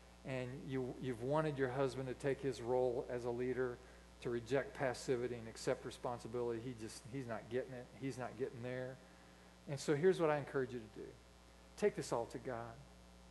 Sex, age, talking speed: male, 40-59, 190 wpm